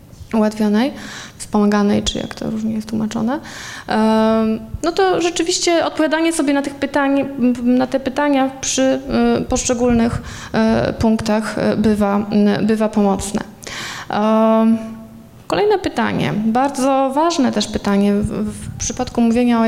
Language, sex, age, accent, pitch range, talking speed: Polish, female, 20-39, native, 215-260 Hz, 110 wpm